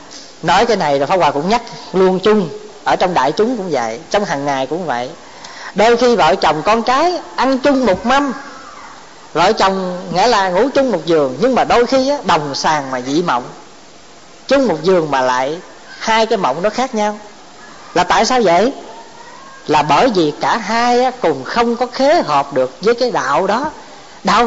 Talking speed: 195 wpm